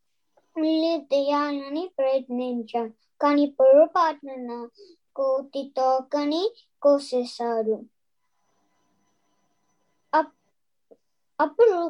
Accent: native